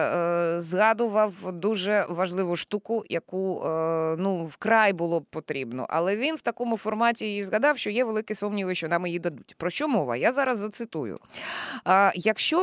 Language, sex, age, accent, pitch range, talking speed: Ukrainian, female, 20-39, native, 175-235 Hz, 150 wpm